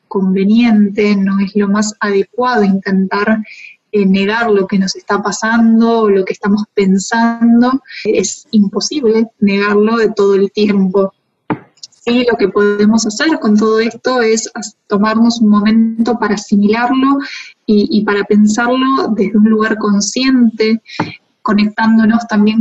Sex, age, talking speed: female, 20-39, 130 wpm